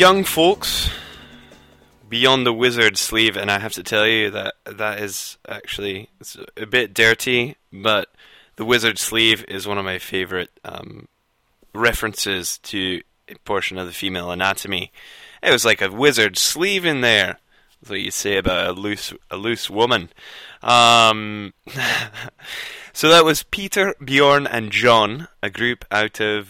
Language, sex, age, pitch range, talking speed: English, male, 20-39, 95-115 Hz, 155 wpm